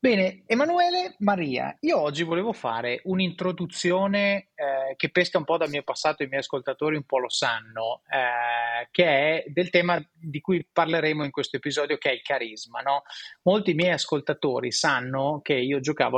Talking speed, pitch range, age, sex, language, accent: 170 wpm, 135-185 Hz, 30-49, male, Italian, native